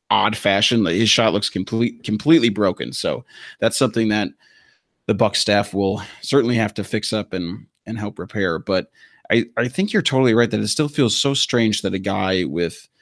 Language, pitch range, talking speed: English, 100-115 Hz, 195 wpm